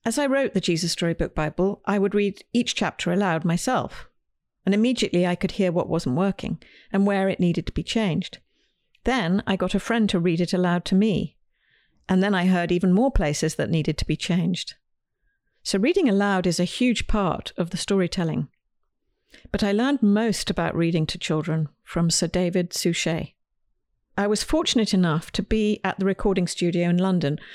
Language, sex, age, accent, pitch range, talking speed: English, female, 50-69, British, 175-210 Hz, 185 wpm